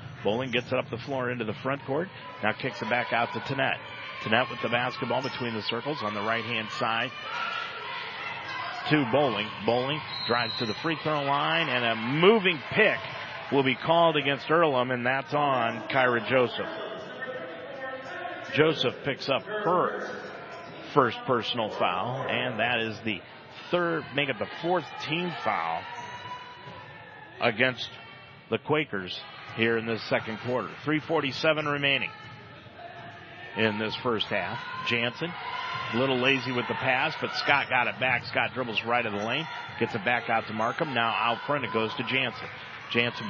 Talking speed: 160 wpm